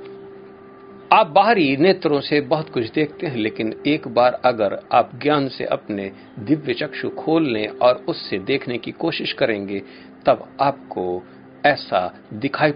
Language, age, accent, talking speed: Hindi, 50-69, native, 135 wpm